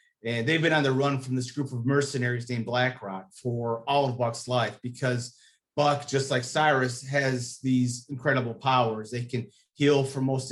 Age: 30-49